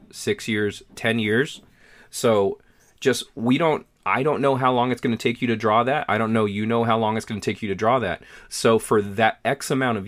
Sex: male